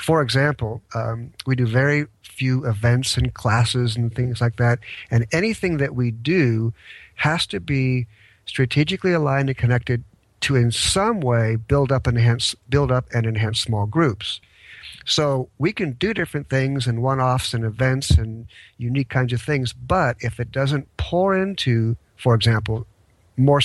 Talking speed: 155 wpm